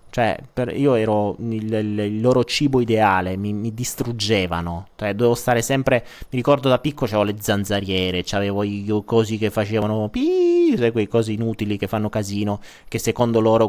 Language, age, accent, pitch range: Italian, 30-49, native, 105-135 Hz